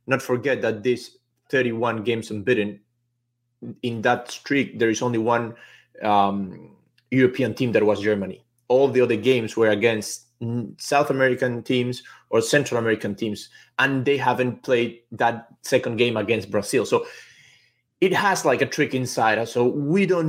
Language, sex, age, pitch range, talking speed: English, male, 20-39, 110-125 Hz, 160 wpm